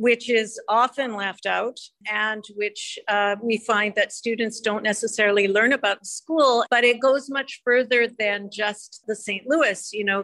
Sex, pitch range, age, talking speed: female, 205-255 Hz, 50-69, 170 wpm